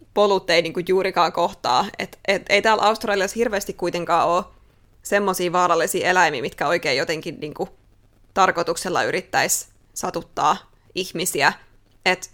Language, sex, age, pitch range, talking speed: Finnish, female, 20-39, 175-205 Hz, 120 wpm